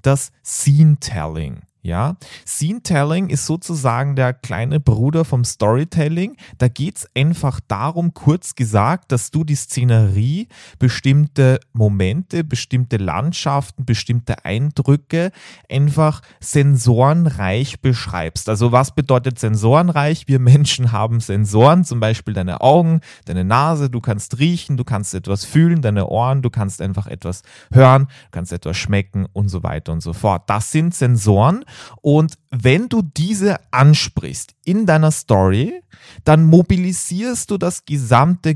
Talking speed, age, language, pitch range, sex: 130 wpm, 30-49, German, 100-140 Hz, male